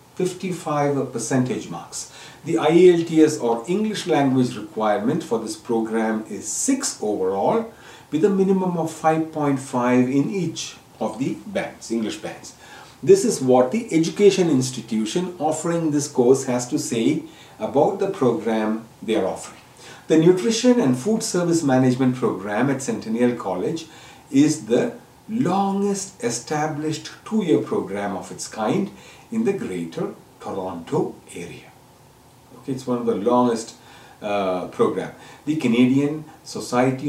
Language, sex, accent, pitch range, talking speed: English, male, Indian, 120-175 Hz, 130 wpm